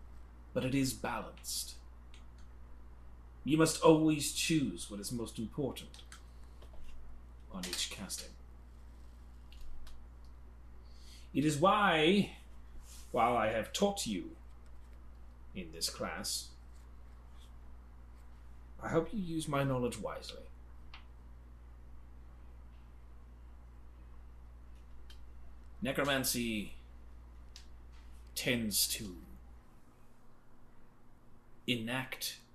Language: English